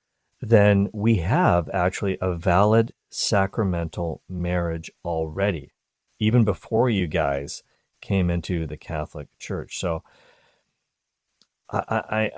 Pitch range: 85-115 Hz